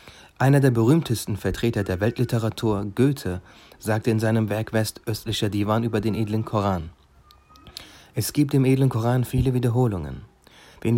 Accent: German